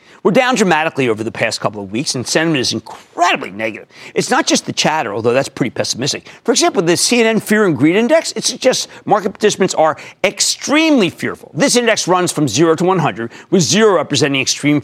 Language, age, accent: English, 50-69, American